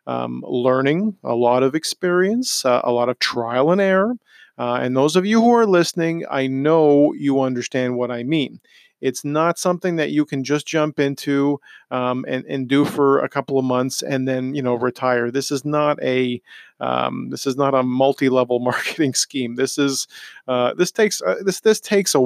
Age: 40-59